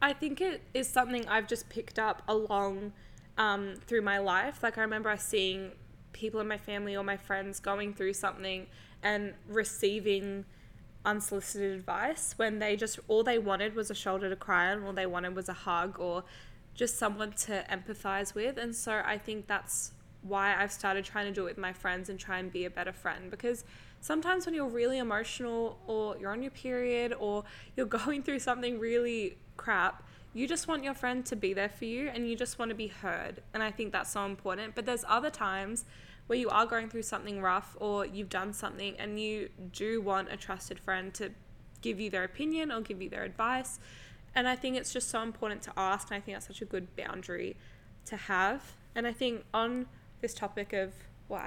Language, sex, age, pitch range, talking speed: English, female, 10-29, 195-235 Hz, 210 wpm